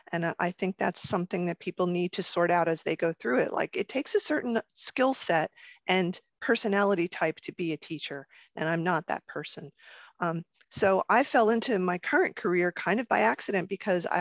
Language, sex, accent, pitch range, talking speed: English, female, American, 175-210 Hz, 205 wpm